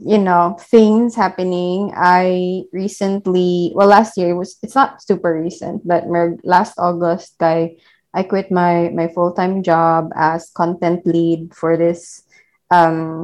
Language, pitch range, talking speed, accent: English, 170-215 Hz, 145 wpm, Filipino